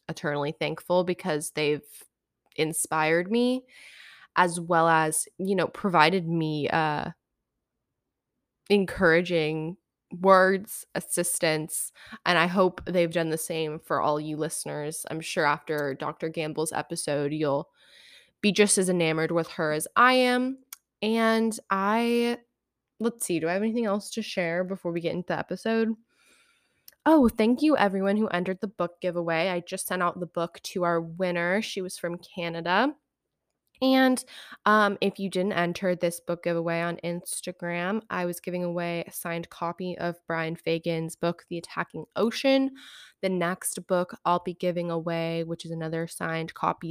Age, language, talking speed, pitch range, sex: 20-39, English, 155 wpm, 165-205 Hz, female